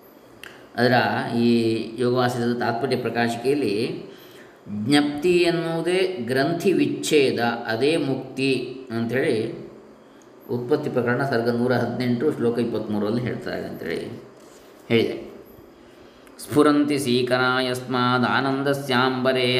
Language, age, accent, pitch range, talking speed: Kannada, 20-39, native, 115-140 Hz, 80 wpm